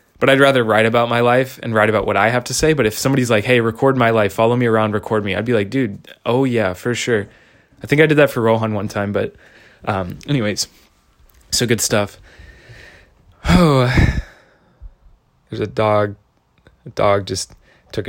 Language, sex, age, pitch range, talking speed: English, male, 20-39, 110-130 Hz, 195 wpm